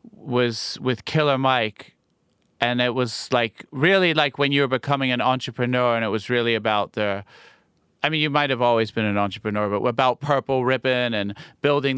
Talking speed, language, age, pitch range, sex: 185 wpm, English, 30-49, 115-145 Hz, male